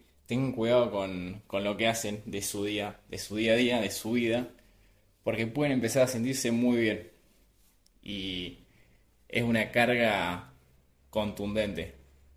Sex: male